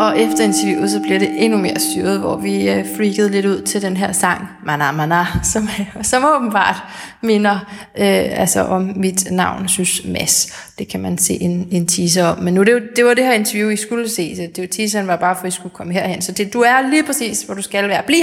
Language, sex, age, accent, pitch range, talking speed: Danish, female, 20-39, native, 200-250 Hz, 235 wpm